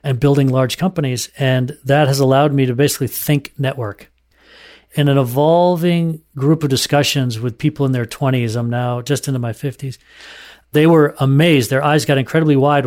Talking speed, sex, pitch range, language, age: 175 wpm, male, 125-145 Hz, English, 40-59